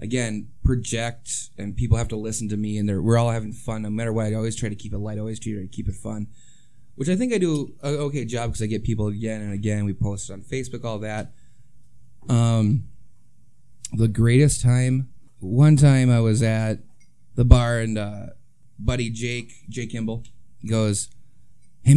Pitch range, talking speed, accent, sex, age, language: 105-130 Hz, 195 wpm, American, male, 20-39, English